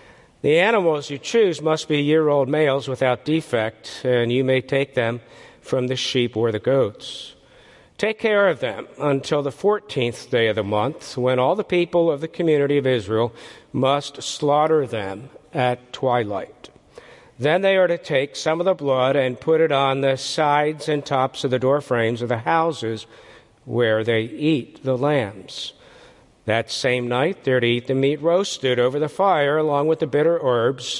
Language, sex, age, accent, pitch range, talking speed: English, male, 60-79, American, 130-160 Hz, 180 wpm